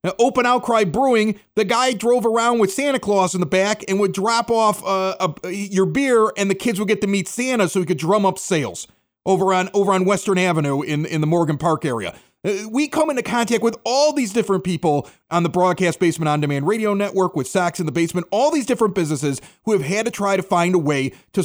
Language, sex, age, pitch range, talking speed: English, male, 30-49, 185-255 Hz, 240 wpm